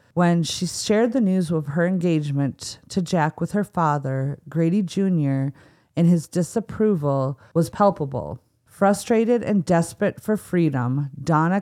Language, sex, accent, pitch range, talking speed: English, female, American, 145-185 Hz, 135 wpm